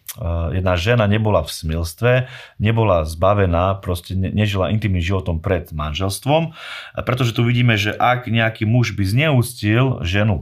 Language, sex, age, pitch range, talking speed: Slovak, male, 30-49, 90-110 Hz, 125 wpm